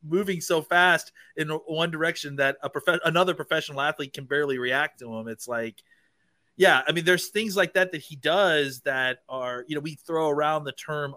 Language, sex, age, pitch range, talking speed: English, male, 30-49, 140-195 Hz, 205 wpm